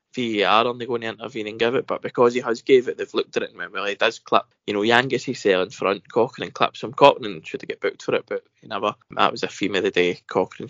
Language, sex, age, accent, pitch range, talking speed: English, male, 10-29, British, 115-185 Hz, 305 wpm